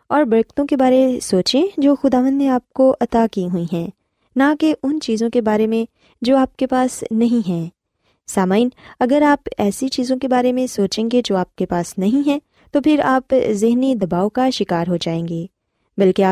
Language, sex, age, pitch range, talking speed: Urdu, female, 20-39, 190-265 Hz, 200 wpm